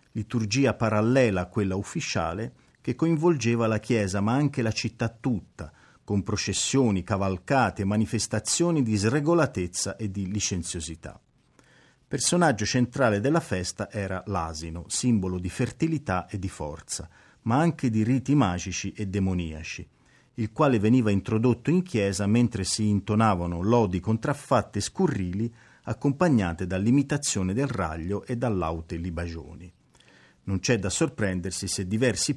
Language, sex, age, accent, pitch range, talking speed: Italian, male, 40-59, native, 95-130 Hz, 130 wpm